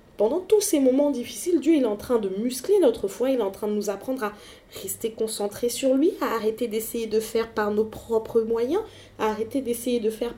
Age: 20-39